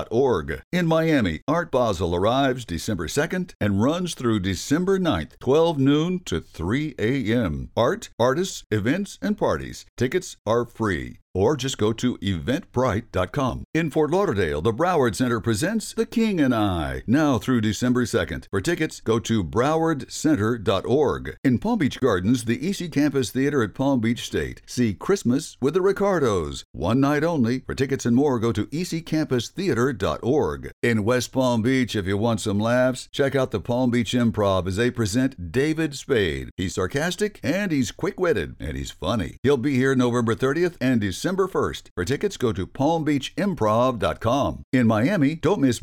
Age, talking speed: 60-79, 160 wpm